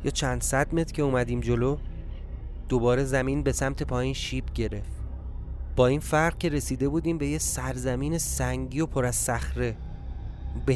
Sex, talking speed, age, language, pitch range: male, 155 wpm, 30-49, Persian, 110-145 Hz